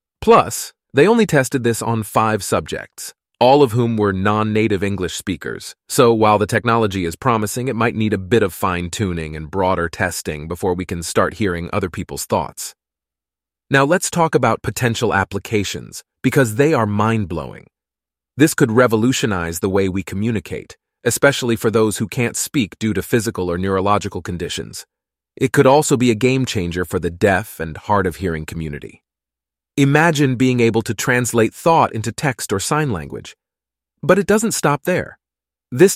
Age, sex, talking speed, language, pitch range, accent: 30-49, male, 160 wpm, English, 95-140 Hz, American